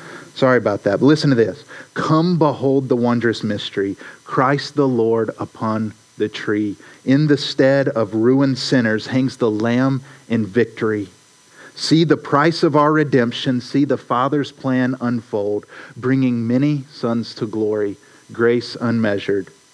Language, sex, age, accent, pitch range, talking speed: English, male, 50-69, American, 110-135 Hz, 145 wpm